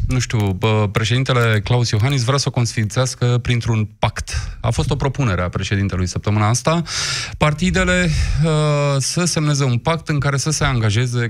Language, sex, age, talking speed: Romanian, male, 20-39, 165 wpm